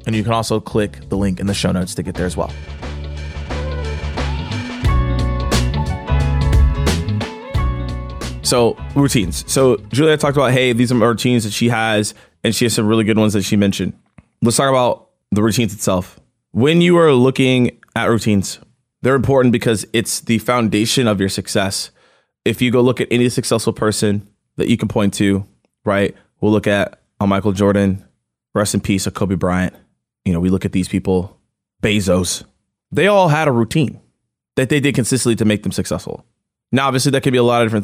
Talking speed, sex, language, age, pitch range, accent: 185 wpm, male, English, 20-39, 95-120 Hz, American